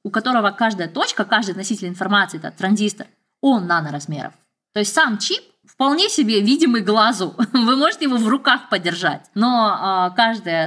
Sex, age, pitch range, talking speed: female, 20-39, 180-240 Hz, 155 wpm